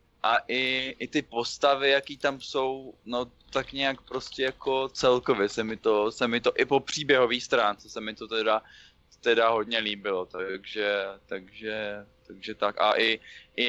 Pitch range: 105-120 Hz